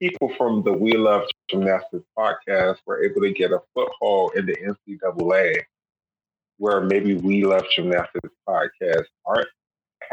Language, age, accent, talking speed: English, 20-39, American, 135 wpm